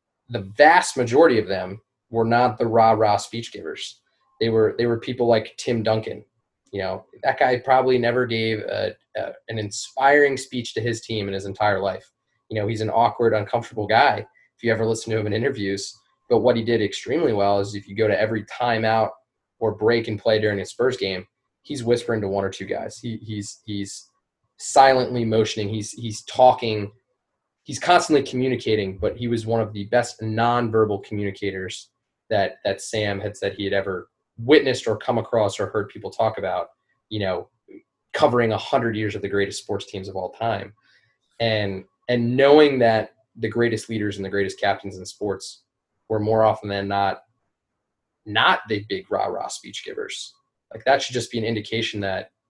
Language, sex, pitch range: English, male, 105-120 Hz